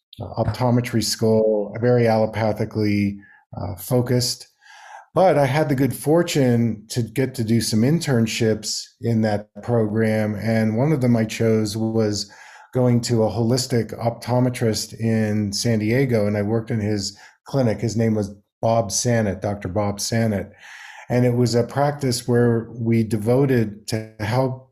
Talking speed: 145 wpm